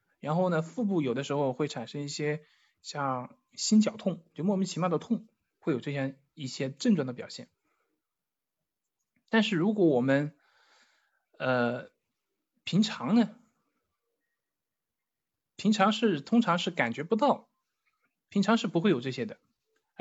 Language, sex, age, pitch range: Chinese, male, 20-39, 145-215 Hz